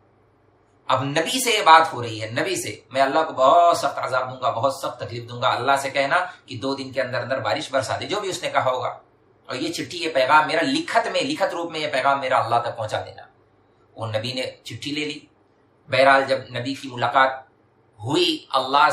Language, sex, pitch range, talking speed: Urdu, male, 120-150 Hz, 145 wpm